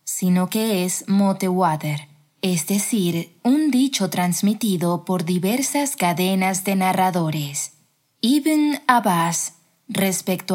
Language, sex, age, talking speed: Spanish, female, 20-39, 100 wpm